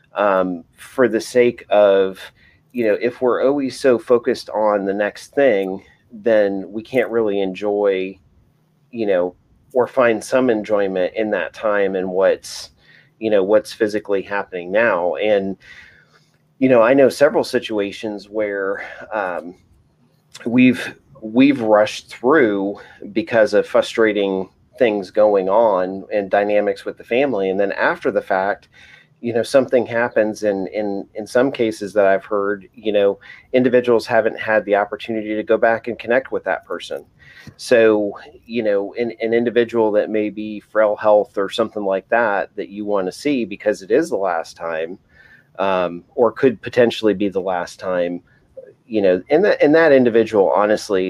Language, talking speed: English, 160 wpm